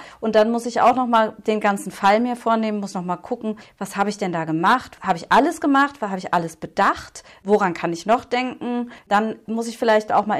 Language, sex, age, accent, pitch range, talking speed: German, female, 40-59, German, 185-215 Hz, 240 wpm